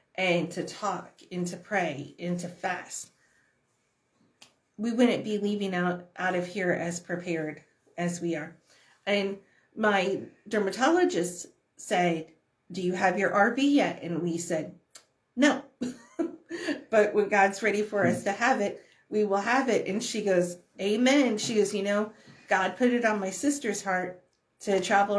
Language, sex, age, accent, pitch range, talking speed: English, female, 40-59, American, 180-225 Hz, 160 wpm